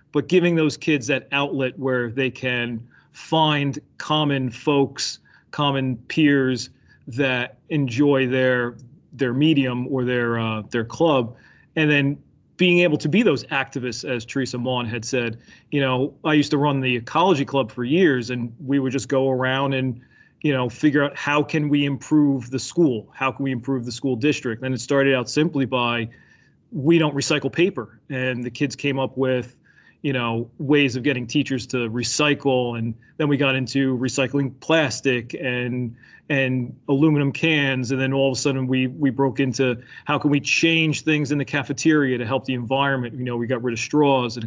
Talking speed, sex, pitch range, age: 185 wpm, male, 125-145 Hz, 30-49